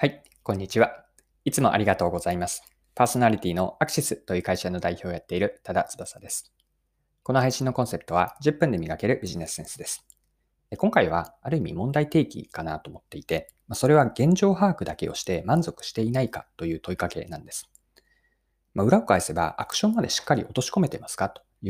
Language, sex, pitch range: Japanese, male, 90-150 Hz